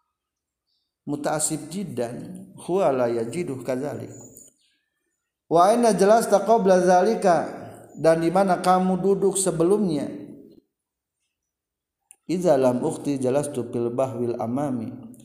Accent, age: native, 50-69